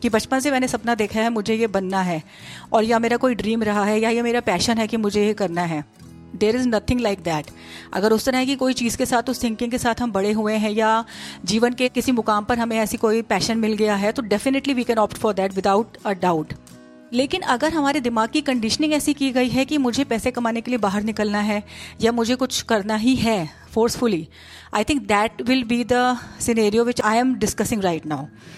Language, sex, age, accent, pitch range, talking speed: Hindi, female, 30-49, native, 210-250 Hz, 230 wpm